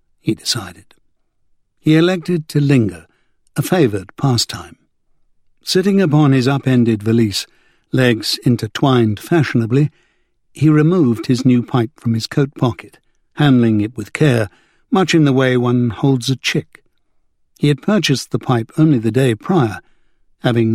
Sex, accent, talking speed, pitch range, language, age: male, British, 140 wpm, 115-145 Hz, English, 60-79